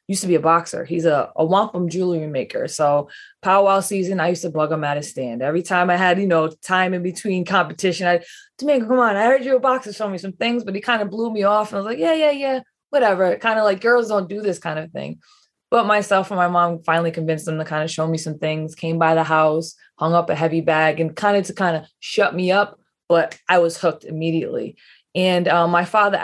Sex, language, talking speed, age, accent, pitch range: female, English, 260 wpm, 20-39, American, 160-200 Hz